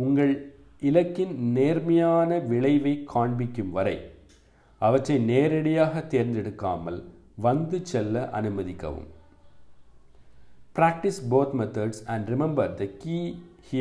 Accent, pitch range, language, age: Indian, 100-145 Hz, English, 50-69